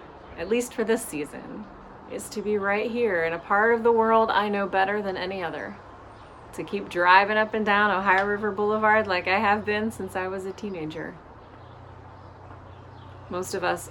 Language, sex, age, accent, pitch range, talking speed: English, female, 30-49, American, 130-210 Hz, 185 wpm